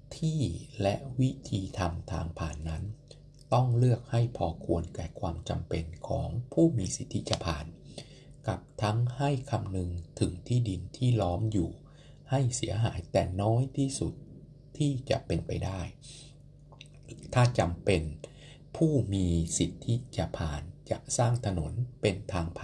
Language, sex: Thai, male